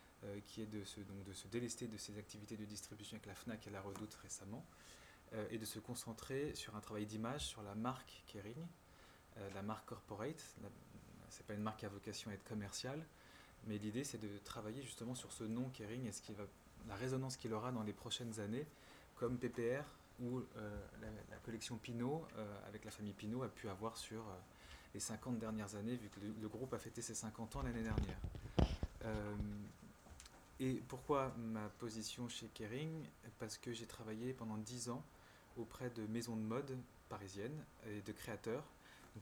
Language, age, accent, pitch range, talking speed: French, 20-39, French, 105-125 Hz, 195 wpm